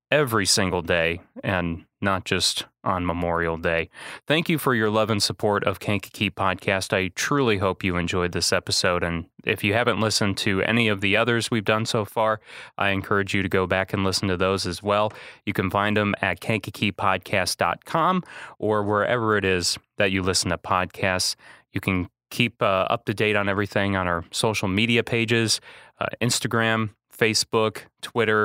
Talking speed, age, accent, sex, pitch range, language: 175 wpm, 30-49, American, male, 90-110 Hz, English